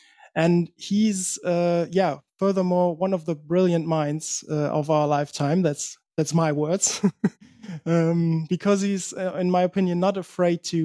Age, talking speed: 20-39, 155 wpm